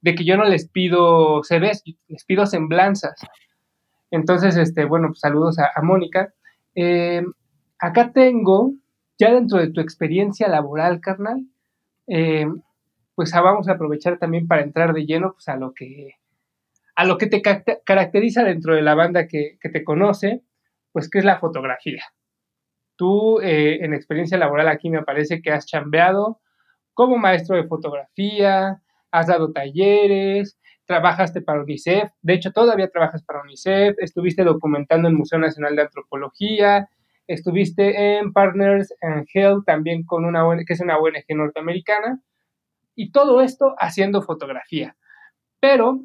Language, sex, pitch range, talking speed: Spanish, male, 160-200 Hz, 150 wpm